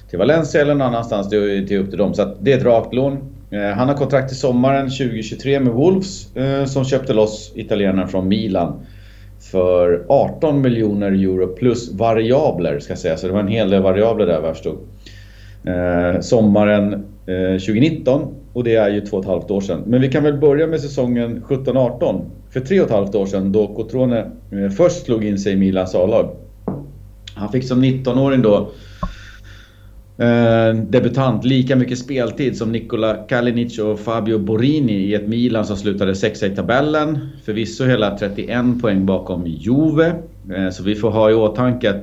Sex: male